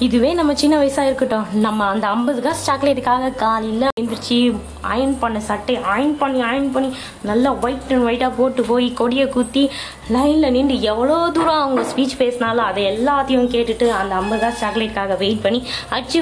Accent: native